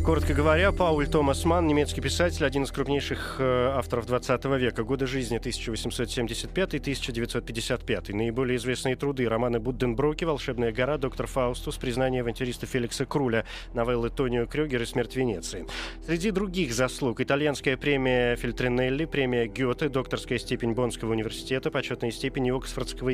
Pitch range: 120-150 Hz